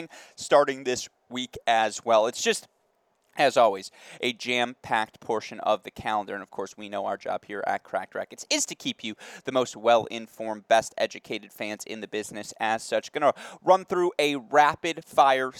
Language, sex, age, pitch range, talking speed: English, male, 20-39, 110-130 Hz, 175 wpm